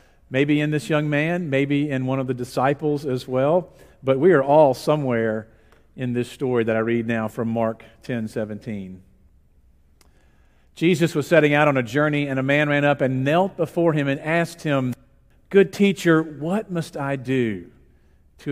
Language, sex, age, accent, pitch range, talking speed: English, male, 50-69, American, 115-160 Hz, 180 wpm